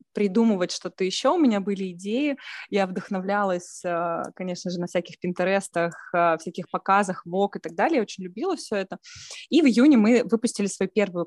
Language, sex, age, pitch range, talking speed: Russian, female, 20-39, 175-215 Hz, 170 wpm